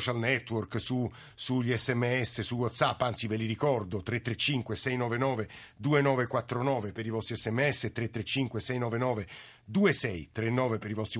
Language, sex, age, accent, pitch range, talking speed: Italian, male, 50-69, native, 110-130 Hz, 115 wpm